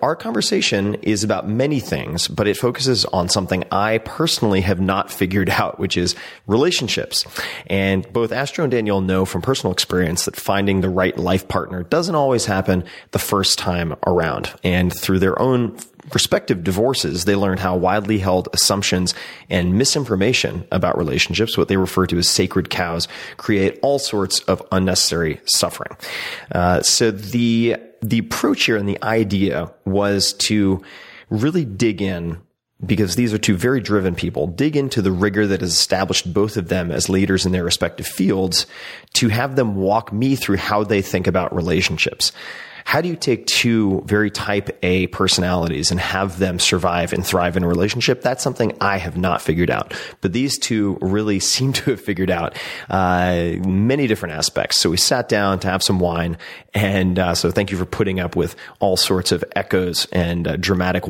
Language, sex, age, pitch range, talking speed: English, male, 30-49, 90-110 Hz, 180 wpm